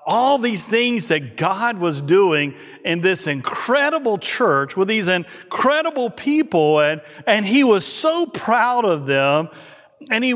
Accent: American